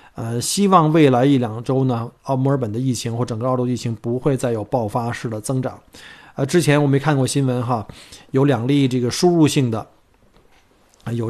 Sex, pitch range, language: male, 120-145 Hz, Chinese